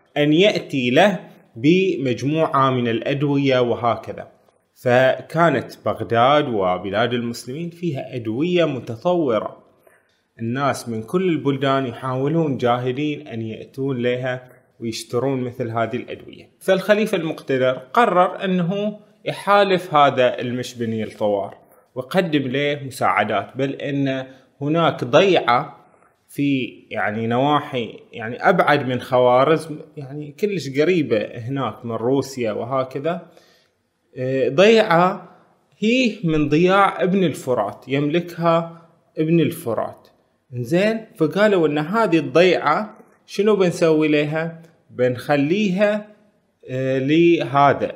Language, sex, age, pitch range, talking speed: Arabic, male, 20-39, 125-170 Hz, 95 wpm